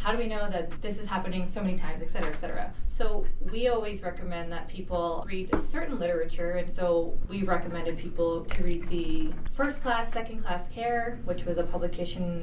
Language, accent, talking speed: English, American, 200 wpm